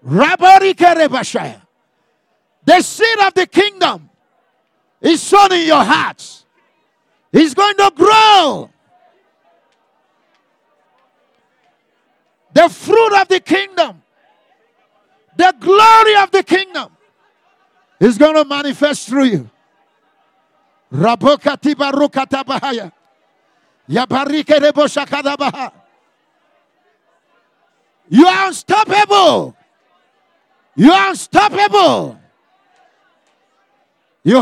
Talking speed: 65 wpm